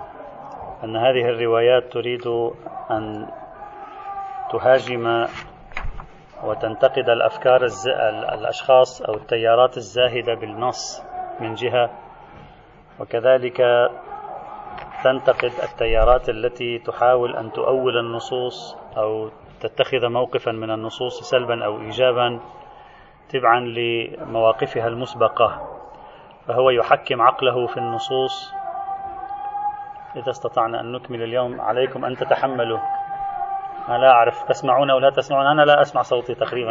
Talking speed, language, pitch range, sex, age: 95 wpm, Arabic, 120-170 Hz, male, 30-49